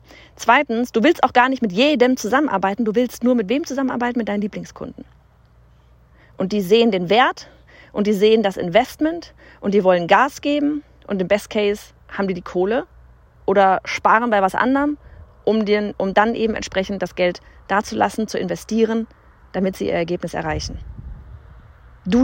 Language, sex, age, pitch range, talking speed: German, female, 30-49, 180-230 Hz, 170 wpm